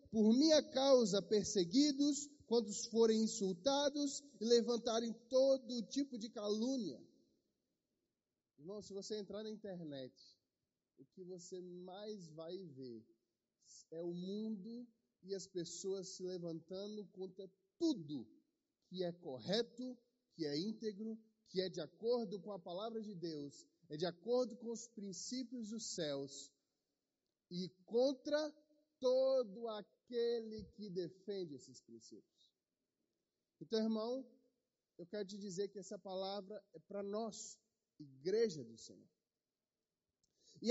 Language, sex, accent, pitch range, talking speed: Portuguese, male, Brazilian, 185-250 Hz, 120 wpm